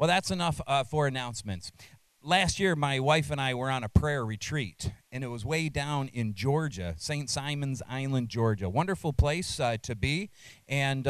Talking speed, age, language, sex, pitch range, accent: 185 wpm, 40-59, English, male, 120-155 Hz, American